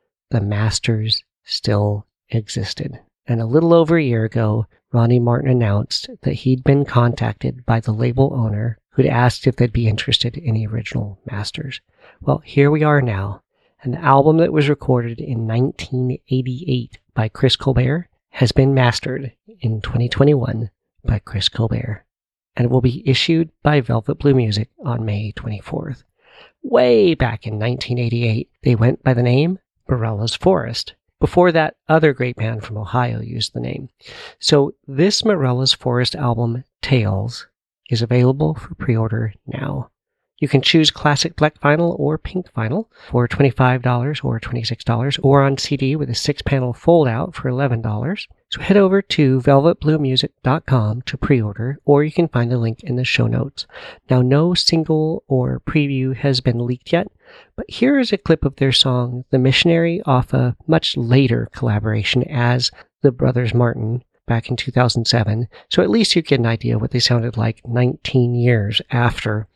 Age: 40-59